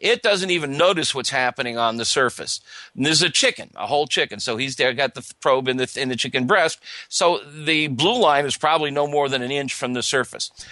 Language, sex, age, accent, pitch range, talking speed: English, male, 50-69, American, 130-180 Hz, 230 wpm